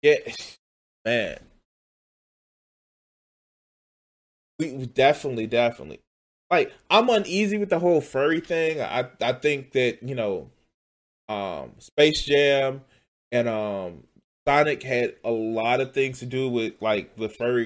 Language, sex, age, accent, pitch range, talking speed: English, male, 20-39, American, 120-200 Hz, 120 wpm